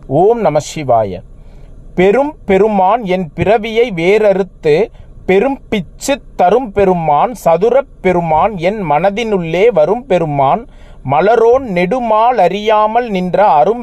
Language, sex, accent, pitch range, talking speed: Tamil, male, native, 170-230 Hz, 85 wpm